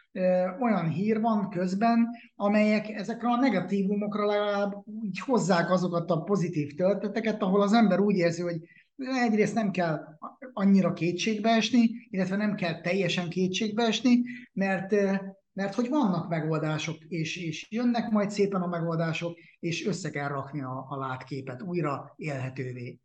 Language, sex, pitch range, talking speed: Hungarian, male, 155-200 Hz, 140 wpm